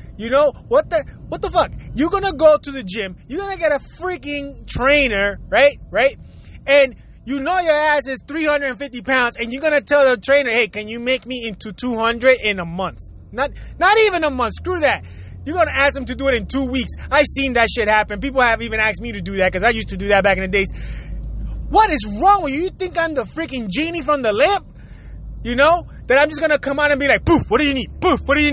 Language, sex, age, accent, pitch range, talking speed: English, male, 20-39, American, 235-320 Hz, 250 wpm